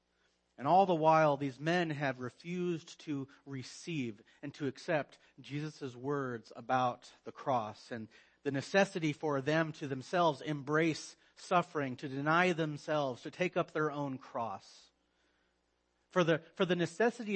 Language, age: English, 40-59